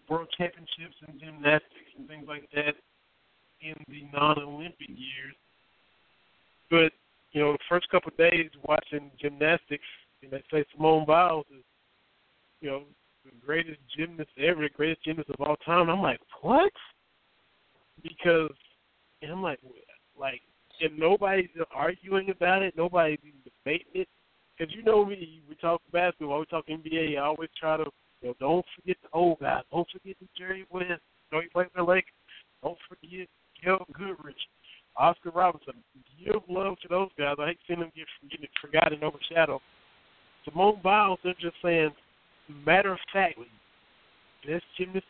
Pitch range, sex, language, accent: 150-190 Hz, male, English, American